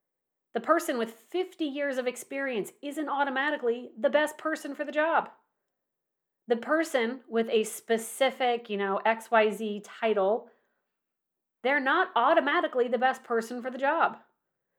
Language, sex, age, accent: English, female, 30-49, American